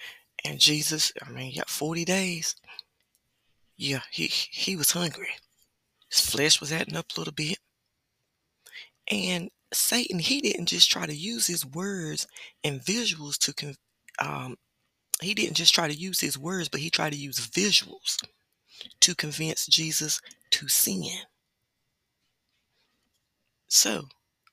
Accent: American